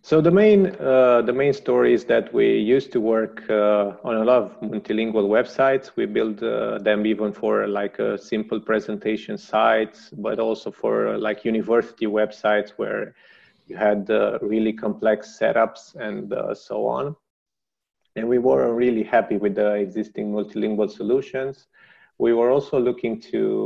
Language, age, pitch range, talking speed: English, 30-49, 110-130 Hz, 160 wpm